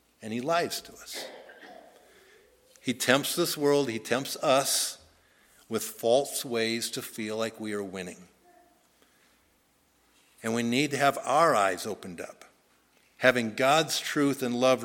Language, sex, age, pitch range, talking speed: English, male, 60-79, 120-150 Hz, 140 wpm